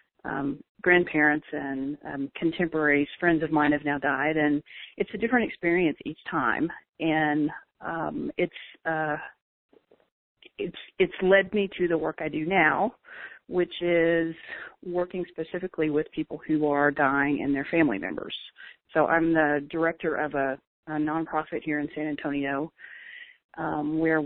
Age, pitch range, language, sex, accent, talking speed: 40-59, 150-170 Hz, English, female, American, 145 wpm